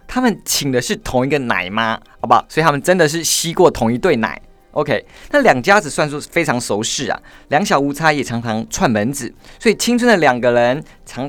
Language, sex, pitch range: Chinese, male, 140-220 Hz